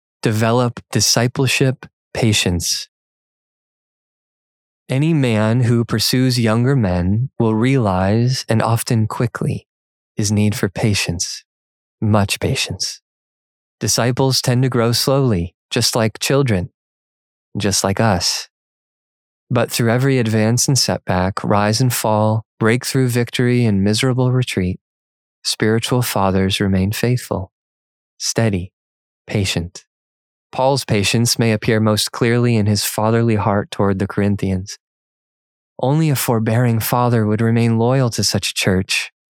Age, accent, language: 20-39, American, English